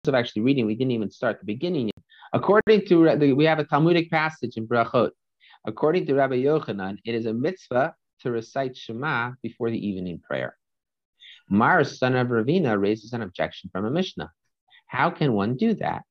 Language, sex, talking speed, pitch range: English, male, 180 wpm, 105-145 Hz